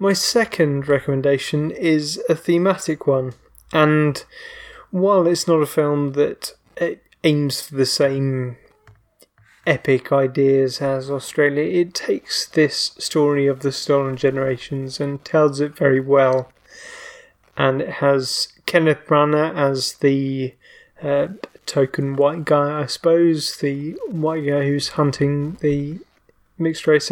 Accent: British